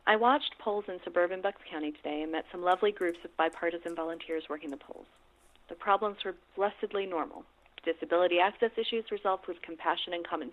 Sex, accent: female, American